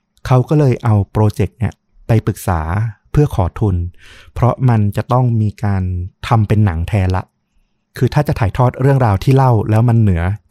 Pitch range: 95-125 Hz